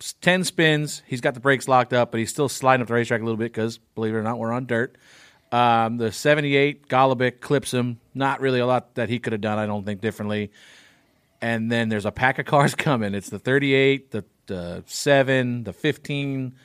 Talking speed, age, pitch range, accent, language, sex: 220 wpm, 40-59, 110-135 Hz, American, English, male